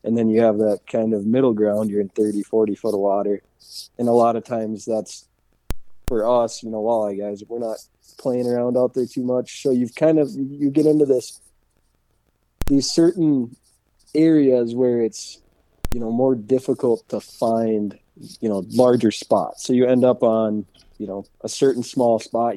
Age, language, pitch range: 20-39, English, 105-130 Hz